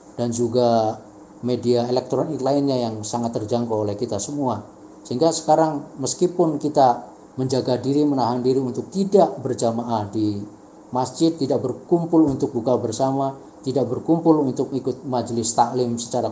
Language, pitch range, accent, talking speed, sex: Indonesian, 110-135 Hz, native, 130 wpm, male